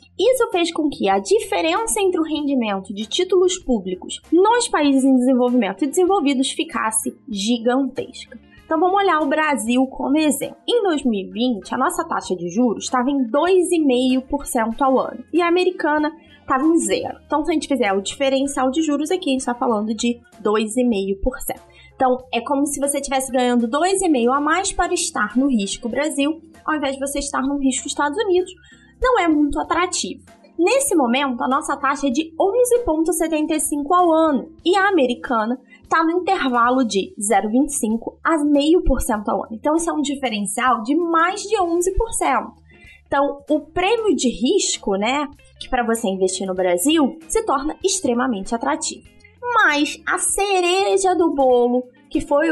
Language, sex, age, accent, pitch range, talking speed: Portuguese, female, 20-39, Brazilian, 245-335 Hz, 165 wpm